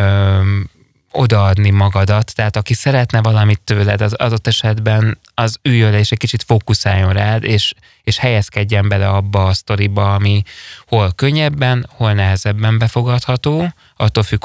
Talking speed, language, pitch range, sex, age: 135 wpm, Hungarian, 100-120 Hz, male, 20-39